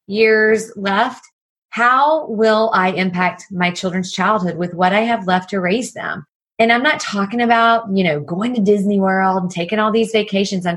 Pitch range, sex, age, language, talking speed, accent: 185-235 Hz, female, 30-49, English, 190 wpm, American